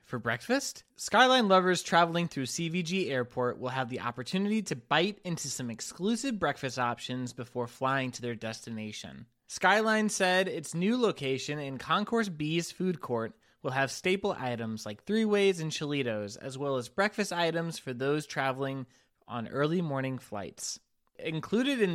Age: 20-39